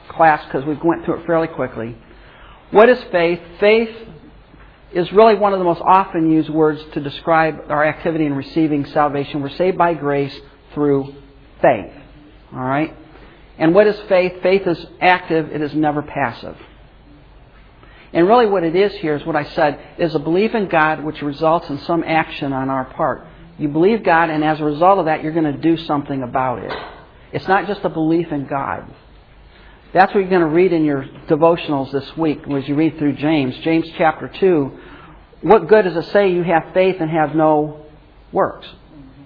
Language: English